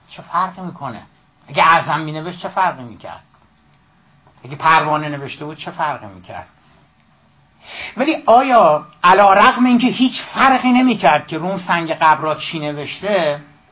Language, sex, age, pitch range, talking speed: Persian, male, 60-79, 140-200 Hz, 130 wpm